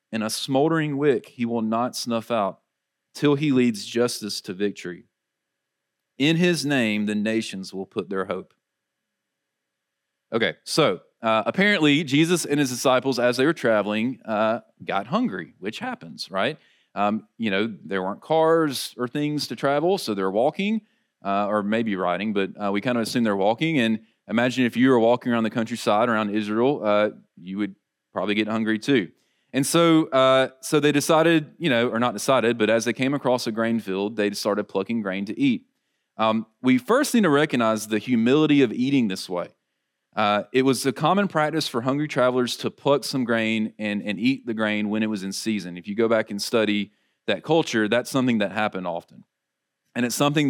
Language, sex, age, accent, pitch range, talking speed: English, male, 30-49, American, 105-140 Hz, 190 wpm